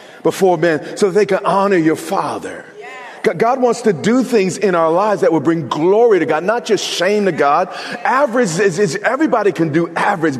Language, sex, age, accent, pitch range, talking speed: English, male, 40-59, American, 155-225 Hz, 195 wpm